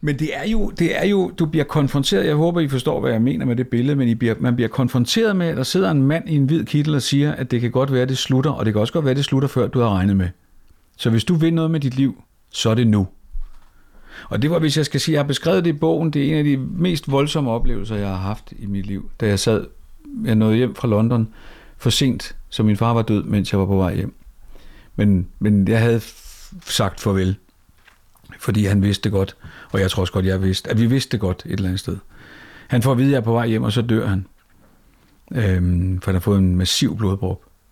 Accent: native